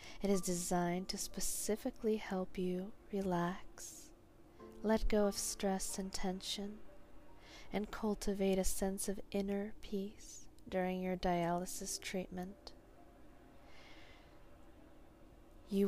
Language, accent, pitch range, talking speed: English, American, 175-200 Hz, 100 wpm